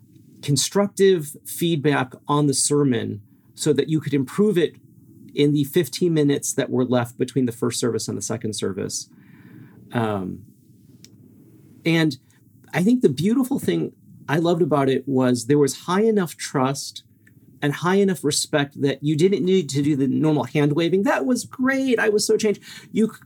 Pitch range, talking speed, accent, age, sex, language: 125-165 Hz, 170 wpm, American, 40-59, male, English